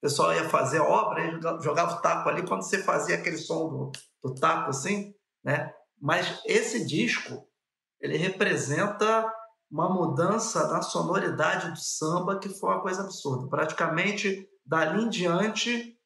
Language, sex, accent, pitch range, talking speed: Portuguese, male, Brazilian, 155-195 Hz, 155 wpm